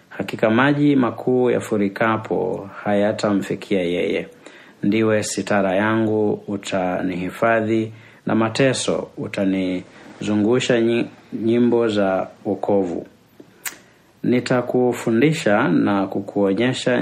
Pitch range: 95-115 Hz